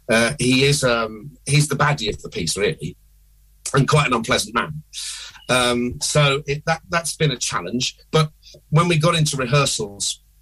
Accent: British